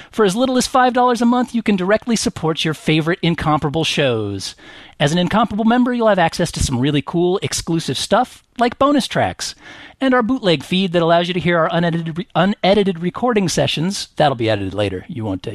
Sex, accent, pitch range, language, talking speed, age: male, American, 125-200 Hz, English, 195 wpm, 40-59